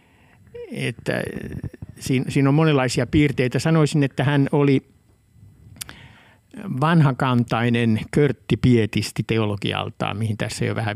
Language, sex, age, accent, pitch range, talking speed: Finnish, male, 60-79, native, 110-130 Hz, 95 wpm